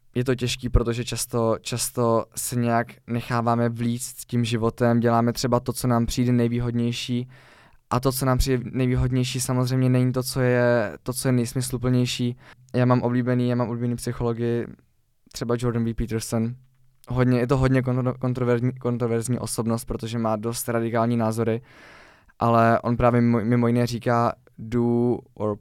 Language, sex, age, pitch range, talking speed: Czech, male, 20-39, 115-125 Hz, 145 wpm